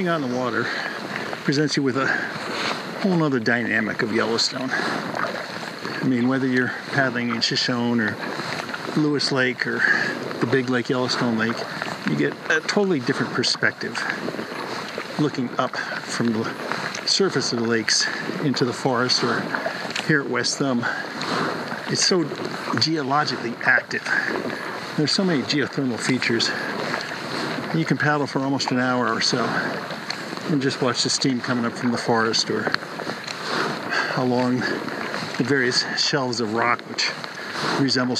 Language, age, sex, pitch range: English, 50-69, male, 120-140 Hz